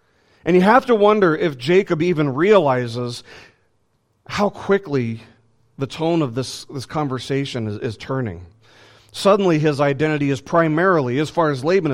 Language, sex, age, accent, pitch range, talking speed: English, male, 40-59, American, 110-150 Hz, 145 wpm